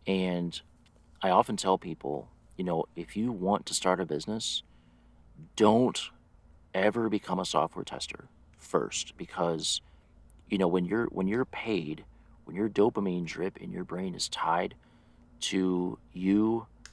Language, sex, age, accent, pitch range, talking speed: English, male, 40-59, American, 85-110 Hz, 140 wpm